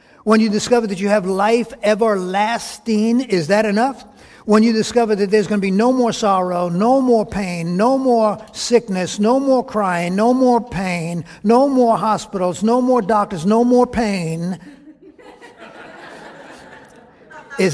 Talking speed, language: 150 wpm, English